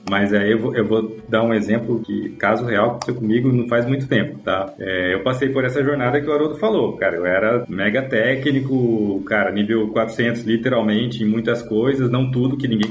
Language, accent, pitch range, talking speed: Portuguese, Brazilian, 110-135 Hz, 215 wpm